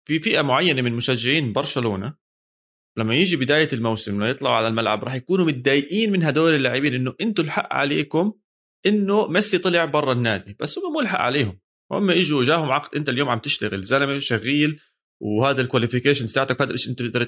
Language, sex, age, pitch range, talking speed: Arabic, male, 20-39, 115-145 Hz, 175 wpm